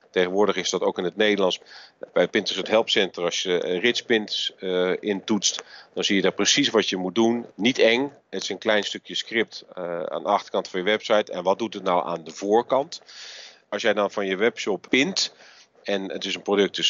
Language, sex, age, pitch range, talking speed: Dutch, male, 40-59, 95-115 Hz, 220 wpm